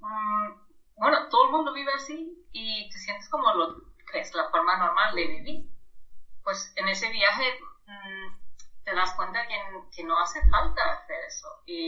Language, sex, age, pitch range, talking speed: Spanish, female, 30-49, 190-295 Hz, 170 wpm